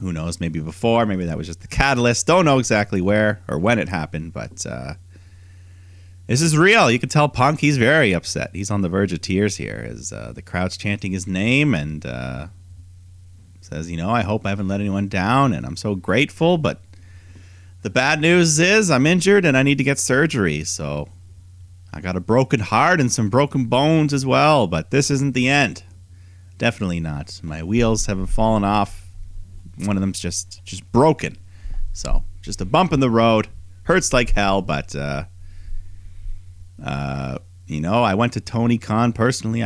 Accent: American